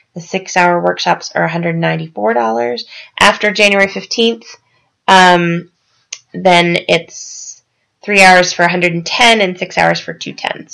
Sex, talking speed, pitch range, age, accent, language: female, 110 wpm, 165-195 Hz, 20-39, American, English